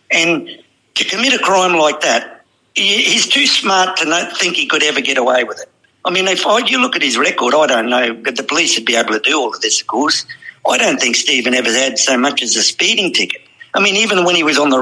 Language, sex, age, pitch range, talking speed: English, male, 50-69, 130-180 Hz, 255 wpm